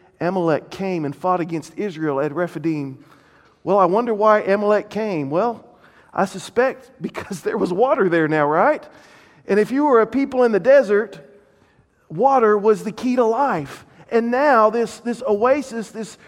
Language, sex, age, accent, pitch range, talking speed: English, male, 40-59, American, 190-250 Hz, 165 wpm